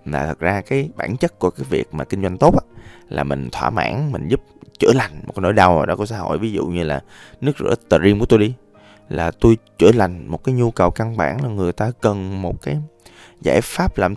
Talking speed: 260 wpm